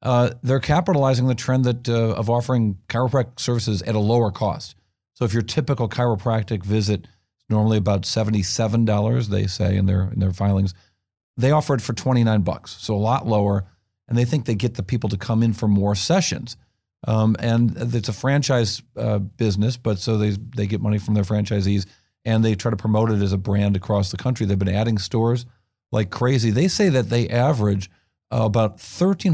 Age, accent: 40-59, American